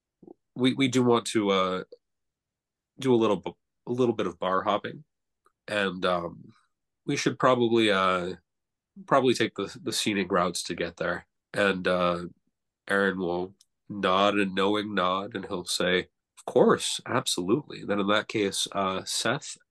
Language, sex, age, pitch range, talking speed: English, male, 30-49, 95-125 Hz, 155 wpm